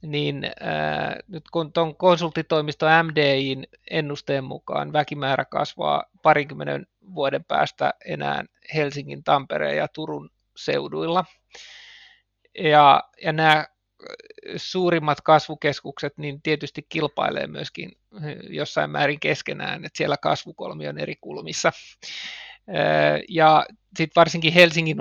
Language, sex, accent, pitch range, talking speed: Finnish, male, native, 135-160 Hz, 100 wpm